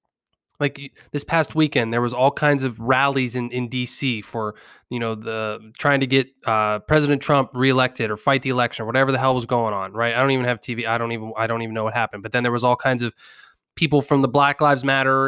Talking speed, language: 250 wpm, English